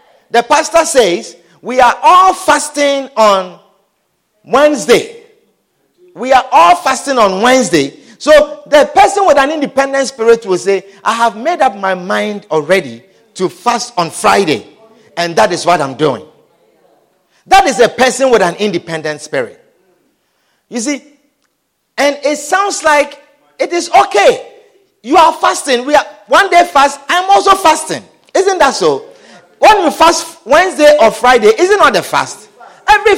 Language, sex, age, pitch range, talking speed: English, male, 50-69, 230-330 Hz, 150 wpm